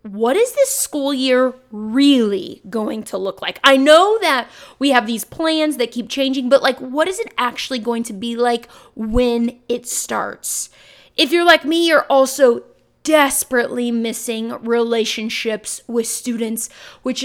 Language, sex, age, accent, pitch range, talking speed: English, female, 20-39, American, 235-295 Hz, 155 wpm